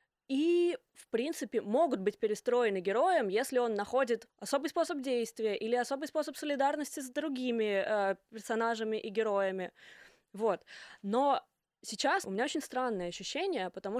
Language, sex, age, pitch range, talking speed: Russian, female, 20-39, 200-245 Hz, 135 wpm